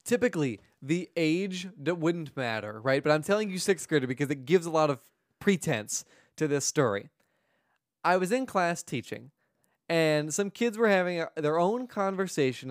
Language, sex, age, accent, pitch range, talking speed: English, male, 20-39, American, 130-190 Hz, 165 wpm